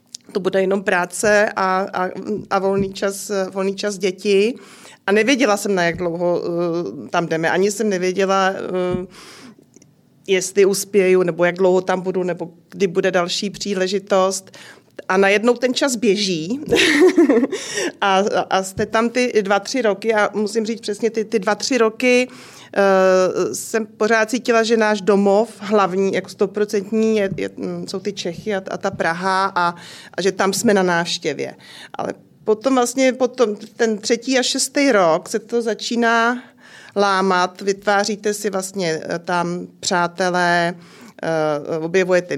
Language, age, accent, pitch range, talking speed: Czech, 40-59, native, 180-210 Hz, 140 wpm